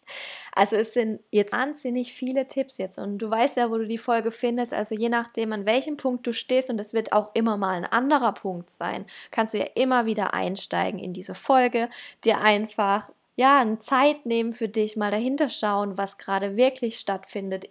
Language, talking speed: German, 200 wpm